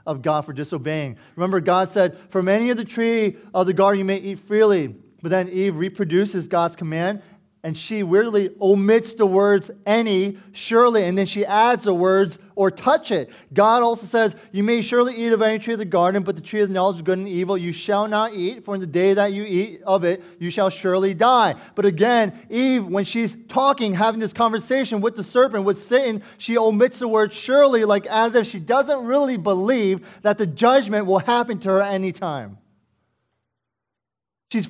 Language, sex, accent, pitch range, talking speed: English, male, American, 140-215 Hz, 205 wpm